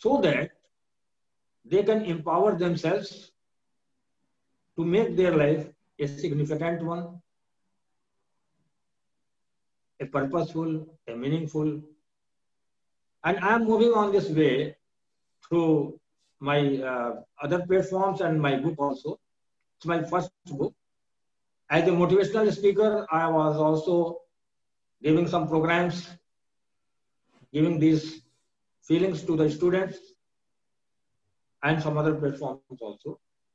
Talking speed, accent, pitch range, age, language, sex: 100 wpm, Indian, 150-185 Hz, 50-69, English, male